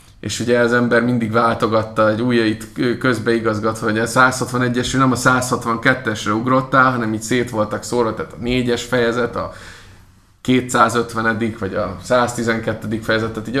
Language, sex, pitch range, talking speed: Hungarian, male, 100-120 Hz, 155 wpm